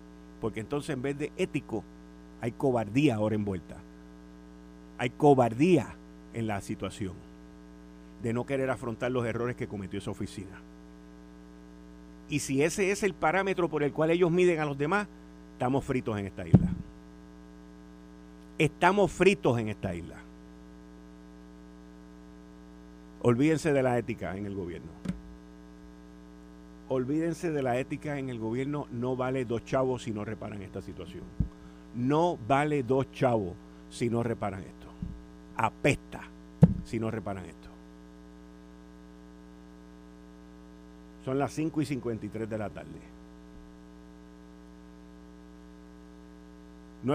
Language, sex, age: Spanish, male, 50-69